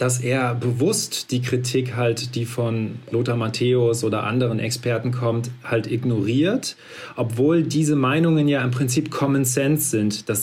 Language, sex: German, male